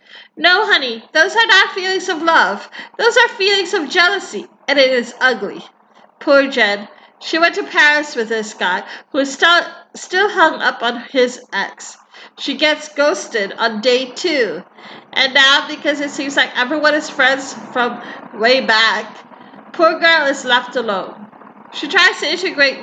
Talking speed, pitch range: 165 wpm, 230-300 Hz